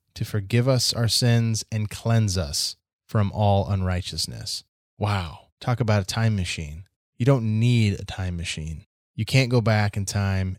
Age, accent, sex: 20-39, American, male